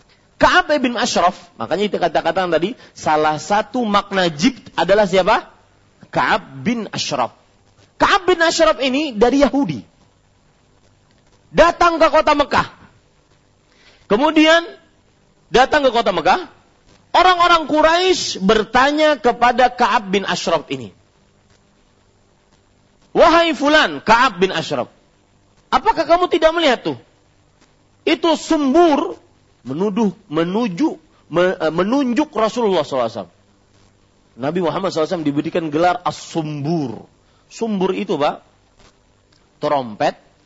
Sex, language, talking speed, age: male, Malay, 100 wpm, 40-59